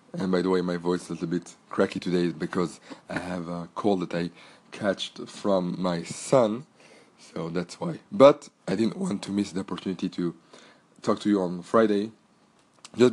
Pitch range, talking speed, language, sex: 90-105 Hz, 185 wpm, English, male